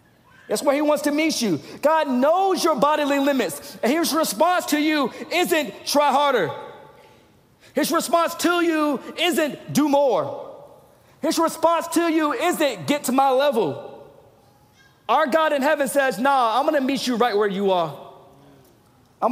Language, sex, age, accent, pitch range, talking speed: English, male, 40-59, American, 225-295 Hz, 165 wpm